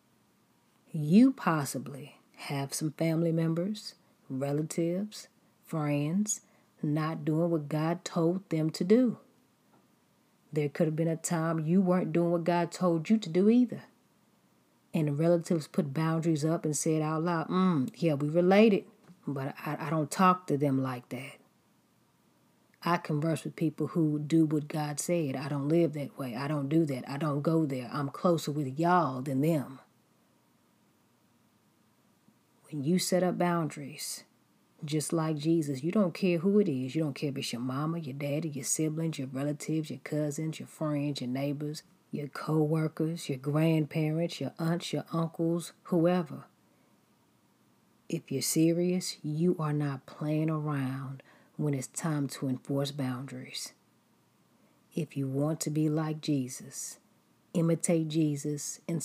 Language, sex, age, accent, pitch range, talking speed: English, female, 40-59, American, 145-170 Hz, 150 wpm